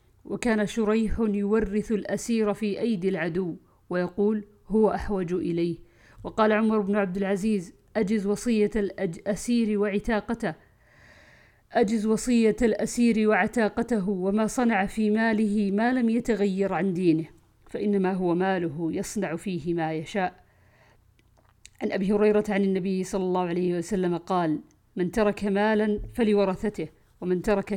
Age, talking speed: 50-69, 120 wpm